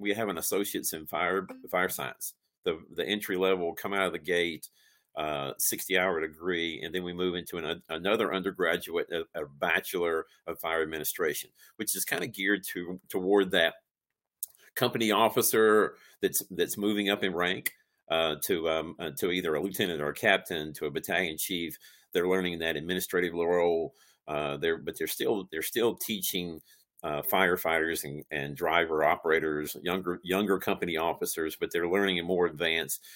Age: 50-69